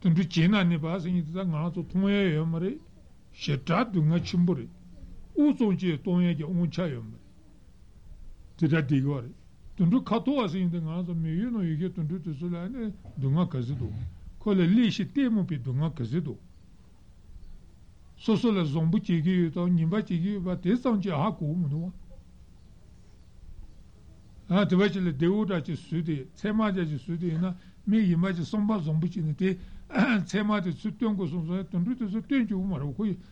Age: 60-79